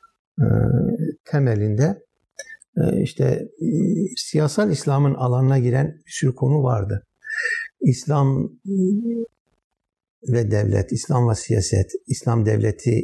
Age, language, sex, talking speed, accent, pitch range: 60-79, Turkish, male, 85 wpm, native, 115-190 Hz